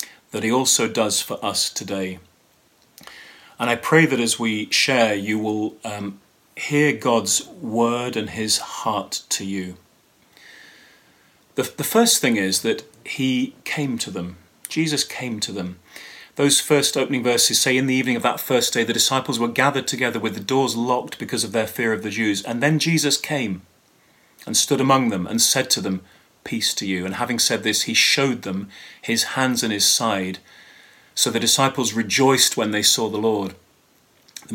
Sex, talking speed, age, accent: male, 180 wpm, 30-49, British